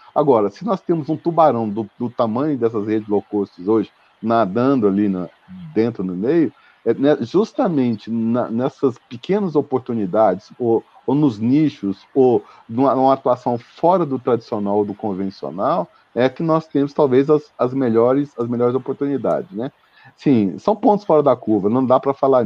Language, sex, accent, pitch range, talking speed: Portuguese, male, Brazilian, 115-155 Hz, 165 wpm